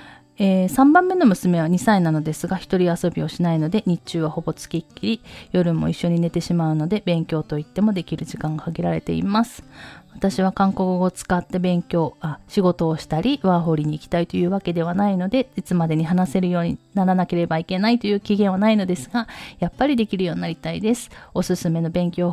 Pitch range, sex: 165-205 Hz, female